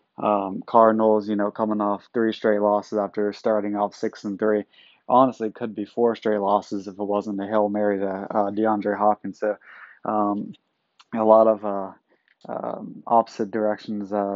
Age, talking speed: 20-39, 175 wpm